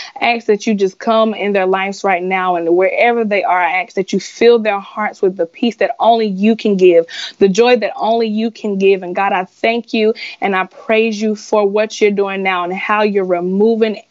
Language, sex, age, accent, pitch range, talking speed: English, female, 20-39, American, 185-215 Hz, 235 wpm